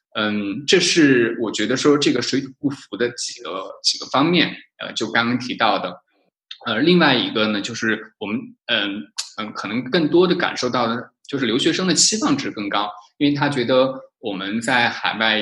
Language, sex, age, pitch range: Chinese, male, 20-39, 110-160 Hz